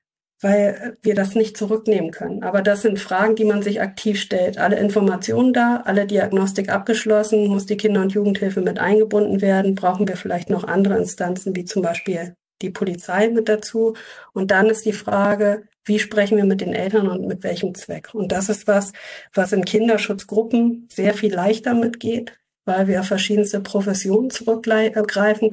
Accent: German